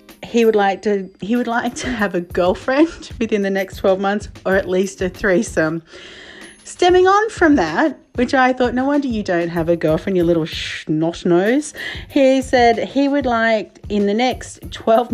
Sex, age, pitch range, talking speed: female, 40-59, 185-265 Hz, 180 wpm